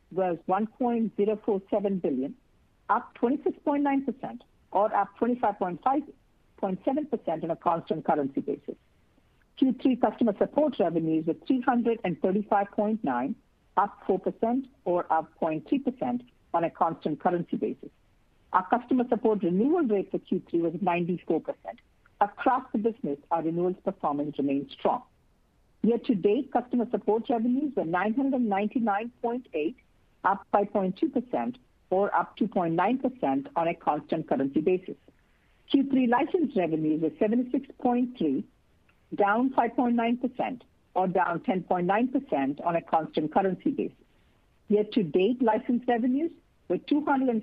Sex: female